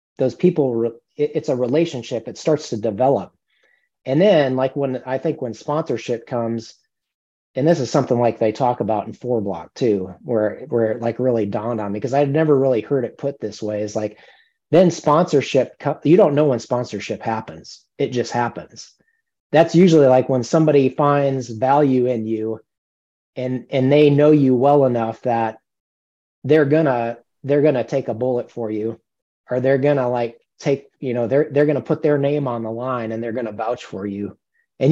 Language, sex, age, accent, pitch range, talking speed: English, male, 30-49, American, 115-140 Hz, 190 wpm